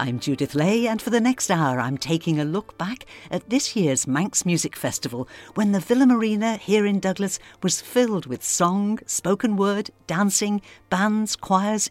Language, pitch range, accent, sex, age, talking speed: English, 140-205 Hz, British, female, 60-79, 175 wpm